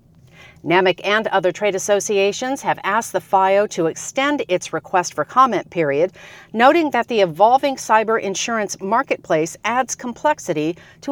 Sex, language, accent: female, English, American